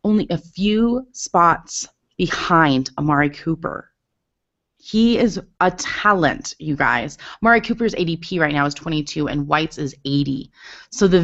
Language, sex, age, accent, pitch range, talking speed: English, female, 30-49, American, 145-190 Hz, 140 wpm